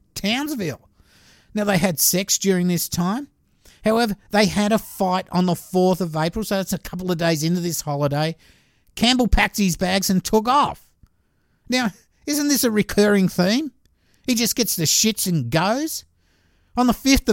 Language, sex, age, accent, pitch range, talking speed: English, male, 50-69, Australian, 170-220 Hz, 175 wpm